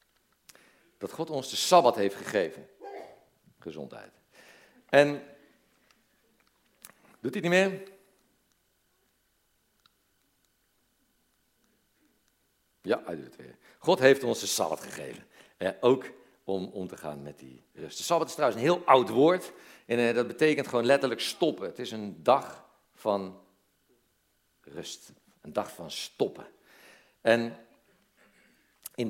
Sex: male